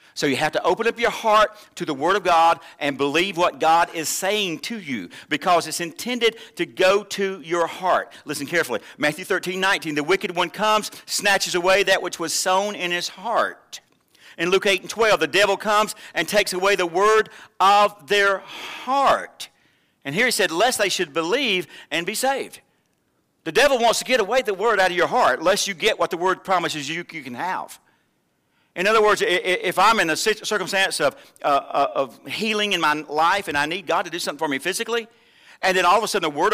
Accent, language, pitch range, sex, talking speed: American, English, 175-230 Hz, male, 210 wpm